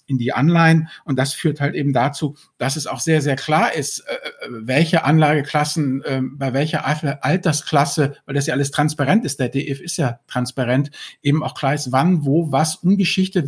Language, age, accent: German, 50-69, German